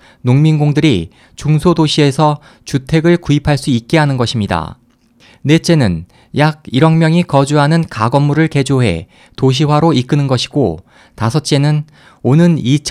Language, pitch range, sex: Korean, 130-160 Hz, male